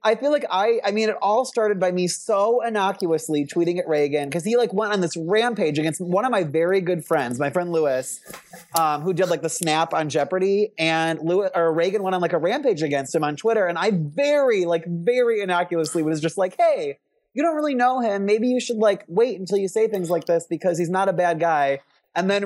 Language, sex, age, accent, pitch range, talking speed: German, male, 30-49, American, 165-220 Hz, 240 wpm